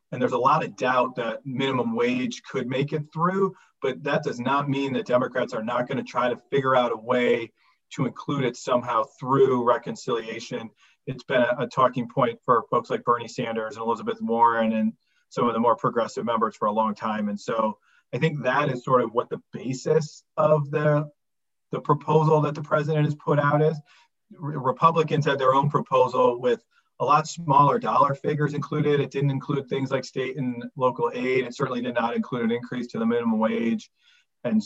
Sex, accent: male, American